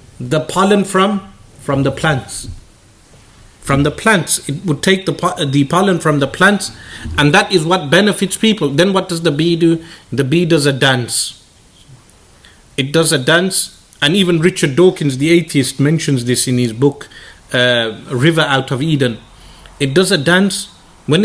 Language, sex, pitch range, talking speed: English, male, 125-170 Hz, 170 wpm